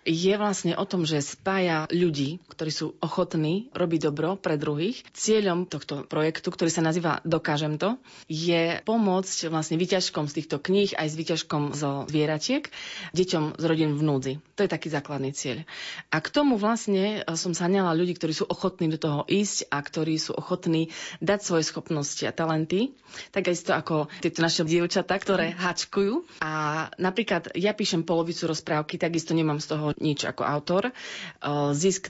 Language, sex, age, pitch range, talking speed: Slovak, female, 30-49, 155-185 Hz, 165 wpm